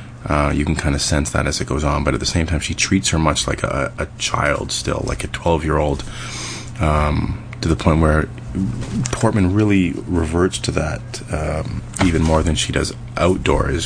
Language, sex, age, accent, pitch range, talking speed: English, male, 30-49, American, 75-110 Hz, 190 wpm